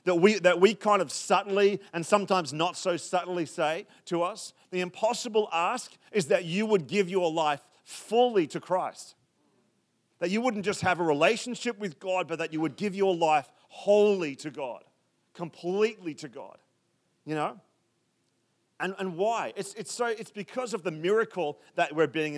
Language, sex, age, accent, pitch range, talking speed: English, male, 40-59, Australian, 165-215 Hz, 175 wpm